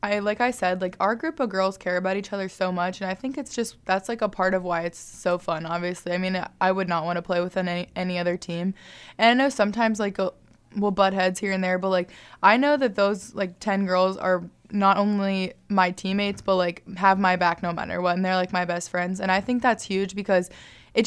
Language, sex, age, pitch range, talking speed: English, female, 20-39, 180-200 Hz, 255 wpm